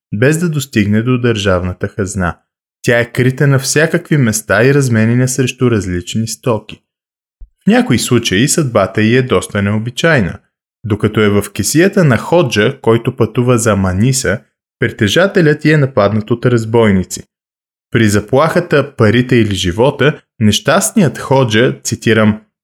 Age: 20-39